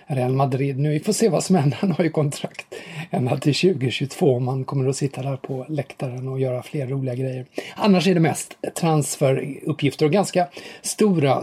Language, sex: English, male